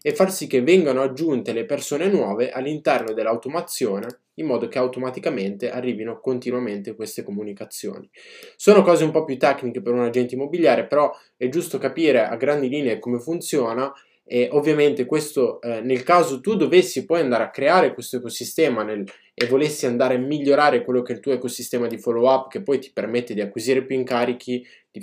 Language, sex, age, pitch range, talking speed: Italian, male, 20-39, 120-145 Hz, 180 wpm